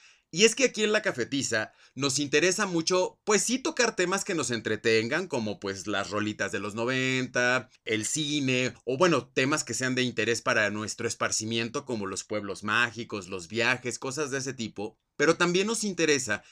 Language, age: Spanish, 30-49